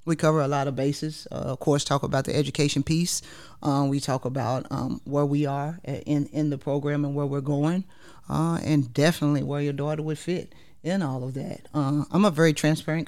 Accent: American